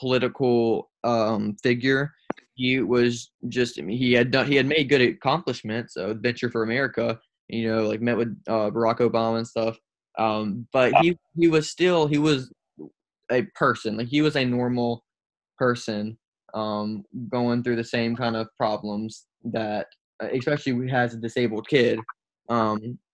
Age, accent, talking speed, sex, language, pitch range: 20-39, American, 160 wpm, male, English, 115-125 Hz